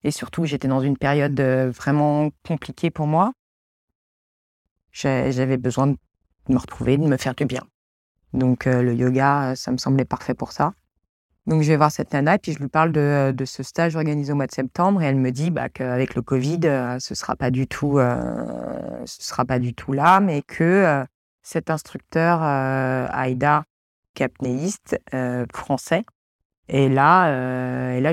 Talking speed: 175 wpm